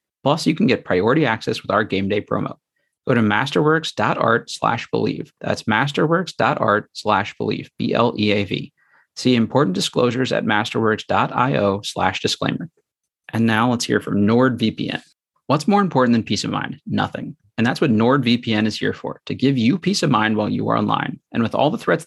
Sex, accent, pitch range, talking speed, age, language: male, American, 105-135 Hz, 175 wpm, 30-49, English